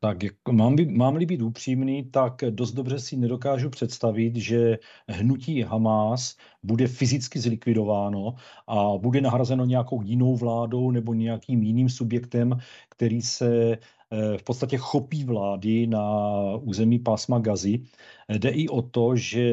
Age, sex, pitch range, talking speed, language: 40-59, male, 110-125 Hz, 130 wpm, Czech